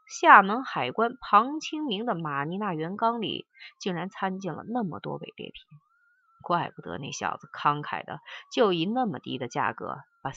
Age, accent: 30-49, native